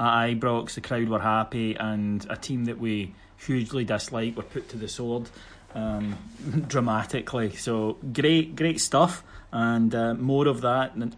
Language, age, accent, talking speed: English, 30-49, British, 160 wpm